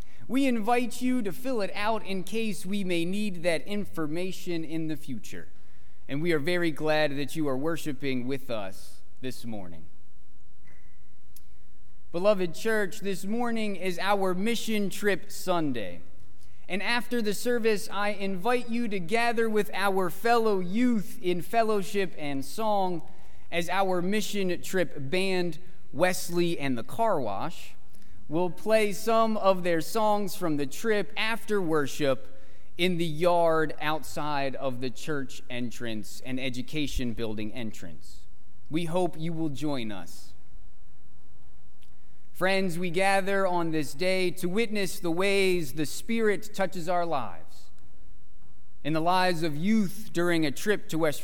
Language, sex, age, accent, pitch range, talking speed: English, male, 30-49, American, 150-200 Hz, 140 wpm